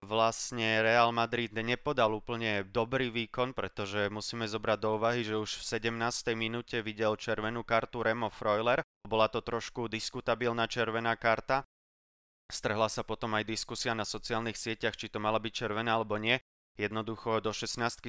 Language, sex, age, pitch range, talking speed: Slovak, male, 20-39, 105-115 Hz, 155 wpm